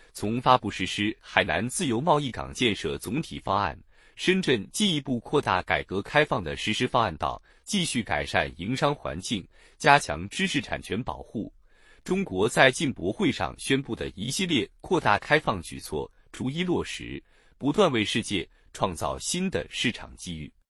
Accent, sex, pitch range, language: native, male, 100-150 Hz, Chinese